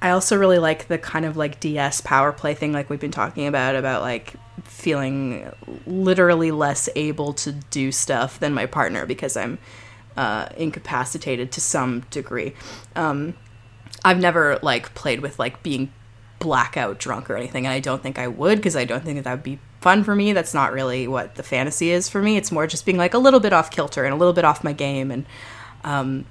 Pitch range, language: 130-175 Hz, English